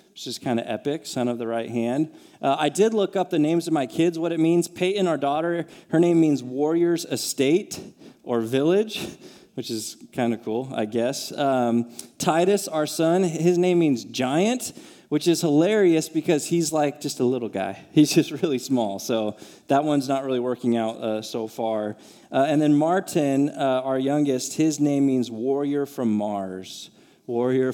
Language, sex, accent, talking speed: English, male, American, 185 wpm